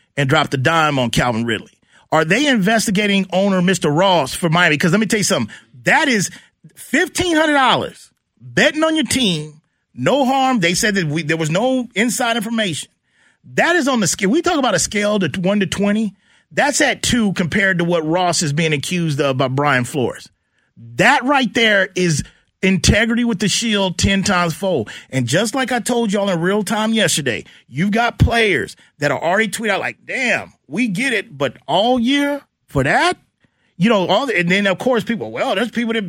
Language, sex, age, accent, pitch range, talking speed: English, male, 40-59, American, 170-235 Hz, 200 wpm